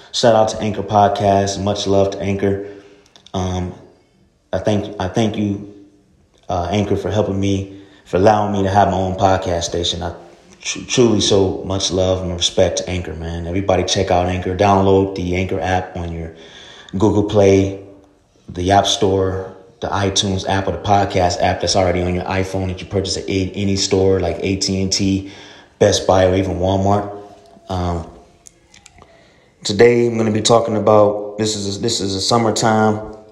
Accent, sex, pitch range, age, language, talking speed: American, male, 90-100 Hz, 30-49, English, 170 wpm